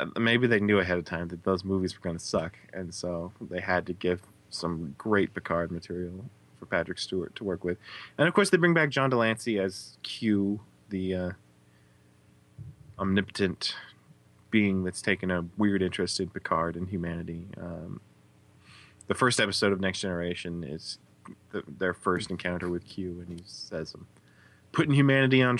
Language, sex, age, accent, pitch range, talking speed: English, male, 20-39, American, 85-110 Hz, 165 wpm